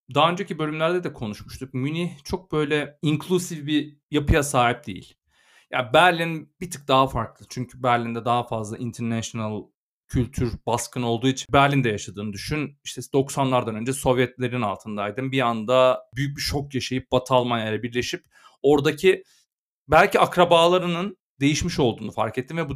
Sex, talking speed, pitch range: male, 145 wpm, 125-165 Hz